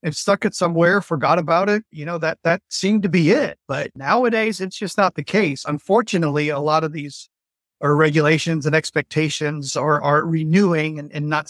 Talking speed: 195 wpm